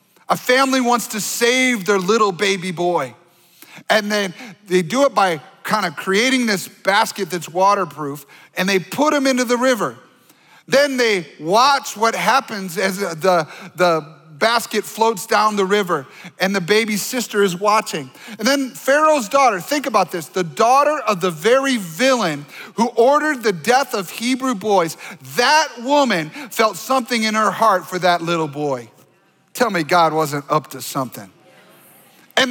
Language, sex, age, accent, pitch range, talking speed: English, male, 40-59, American, 185-255 Hz, 160 wpm